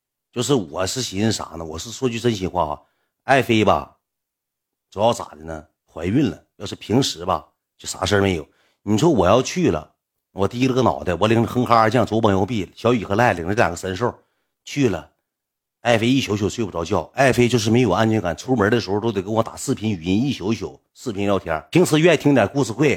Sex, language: male, Chinese